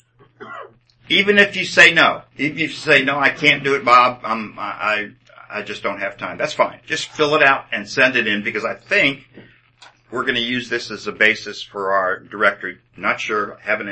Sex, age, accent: male, 50-69, American